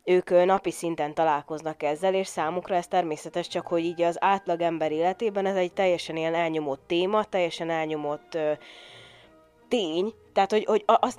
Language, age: Hungarian, 20-39